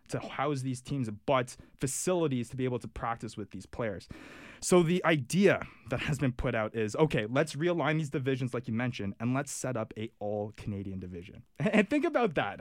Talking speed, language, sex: 200 wpm, English, male